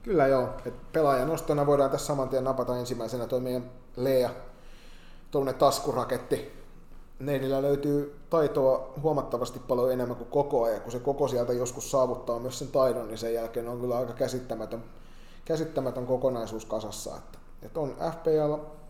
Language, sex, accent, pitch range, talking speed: Finnish, male, native, 110-135 Hz, 140 wpm